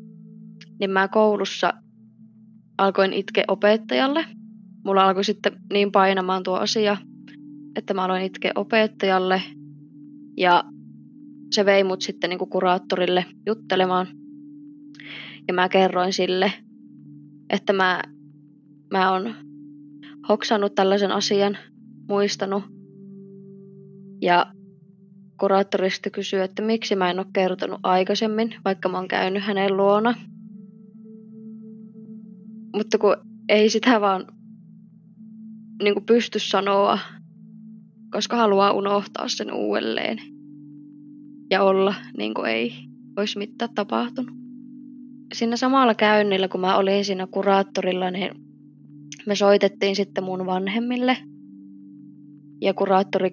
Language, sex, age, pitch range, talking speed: Finnish, female, 20-39, 185-215 Hz, 100 wpm